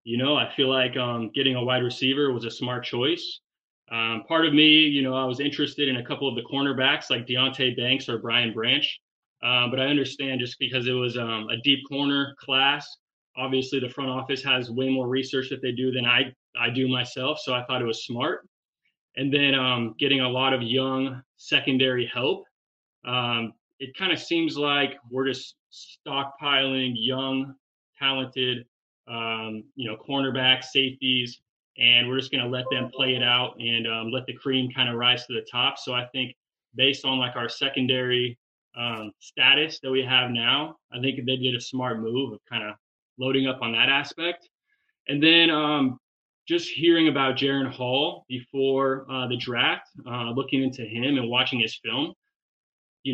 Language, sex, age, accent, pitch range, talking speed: English, male, 20-39, American, 125-135 Hz, 190 wpm